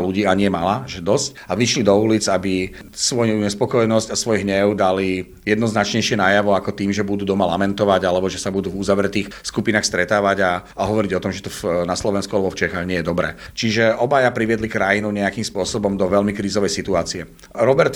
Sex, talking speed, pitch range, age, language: male, 195 wpm, 100-115 Hz, 40-59, Slovak